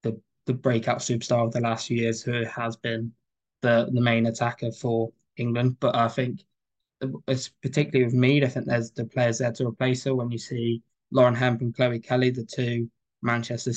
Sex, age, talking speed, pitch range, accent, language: male, 10-29, 195 wpm, 120-125 Hz, British, English